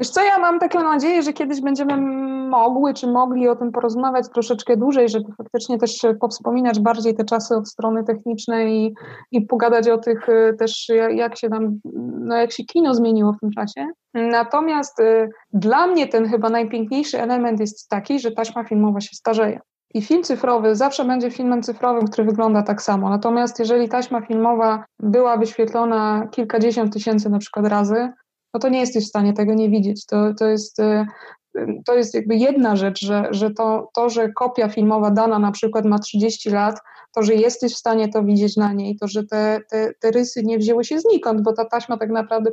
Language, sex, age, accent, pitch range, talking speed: Polish, female, 20-39, native, 220-245 Hz, 190 wpm